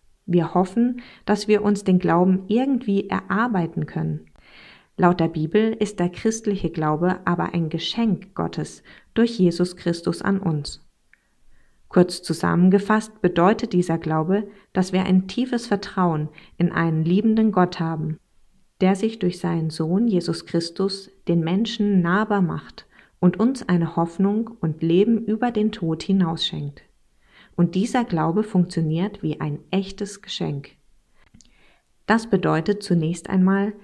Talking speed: 135 wpm